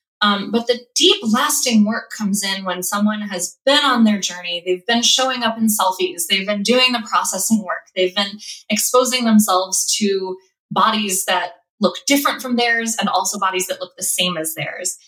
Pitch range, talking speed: 190-255 Hz, 185 wpm